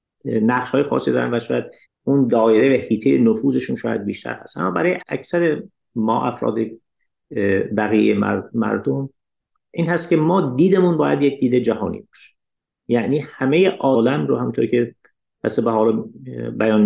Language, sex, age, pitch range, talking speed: Persian, male, 50-69, 115-155 Hz, 140 wpm